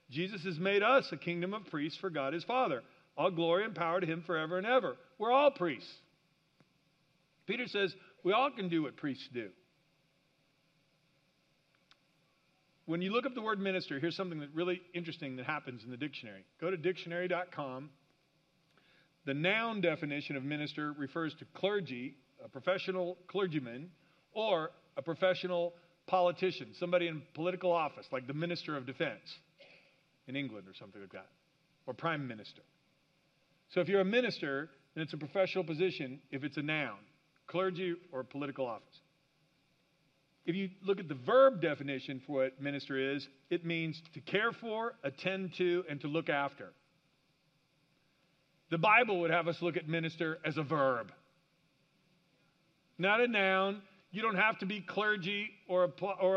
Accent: American